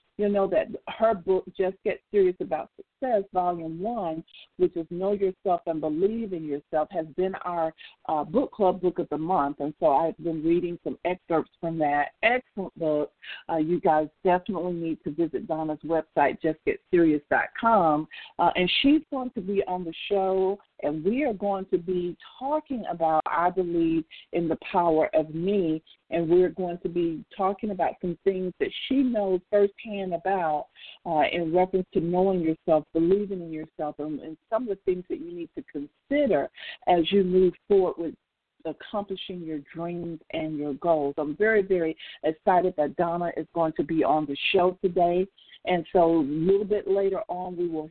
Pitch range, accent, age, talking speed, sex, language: 165-205 Hz, American, 50-69, 180 wpm, female, English